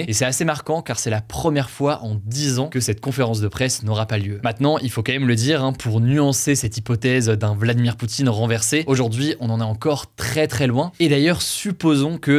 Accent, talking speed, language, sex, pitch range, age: French, 230 wpm, French, male, 115-140 Hz, 20-39